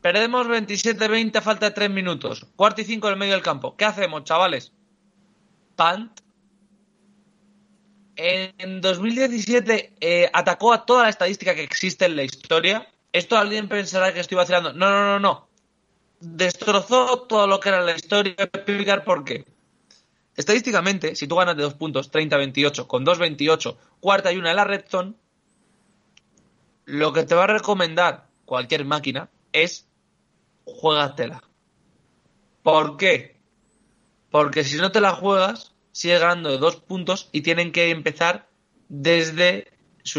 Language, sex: Spanish, male